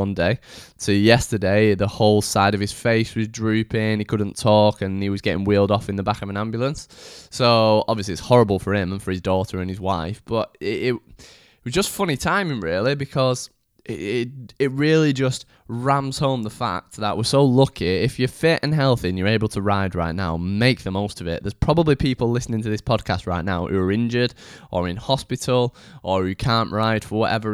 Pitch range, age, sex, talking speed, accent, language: 100-120 Hz, 10-29, male, 215 wpm, British, English